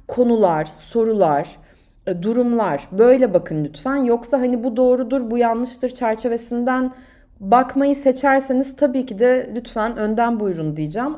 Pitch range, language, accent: 200-250 Hz, Turkish, native